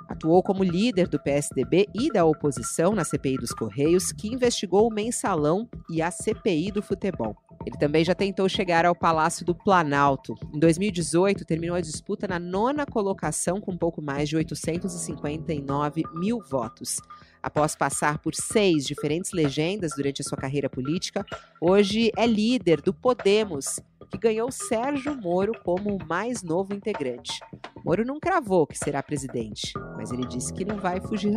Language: Portuguese